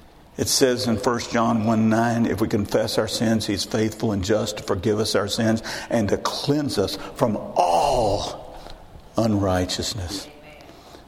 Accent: American